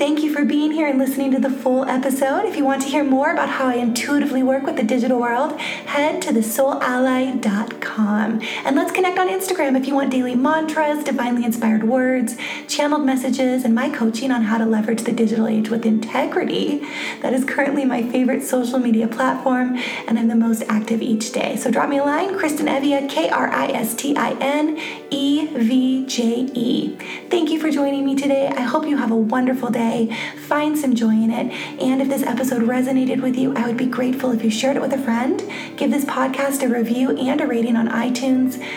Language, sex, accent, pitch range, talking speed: English, female, American, 230-280 Hz, 195 wpm